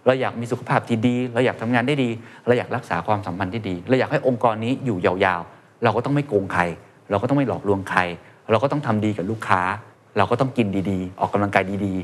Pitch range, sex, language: 105-140 Hz, male, Thai